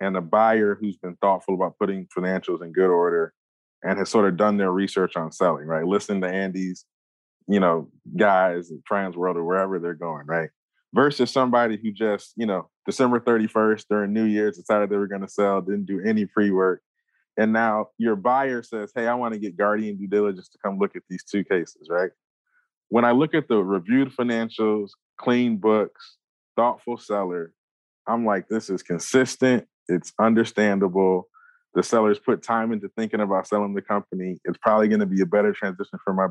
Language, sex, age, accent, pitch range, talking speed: English, male, 20-39, American, 95-115 Hz, 190 wpm